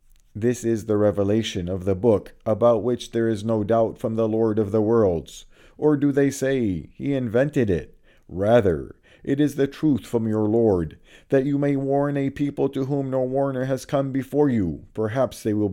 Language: English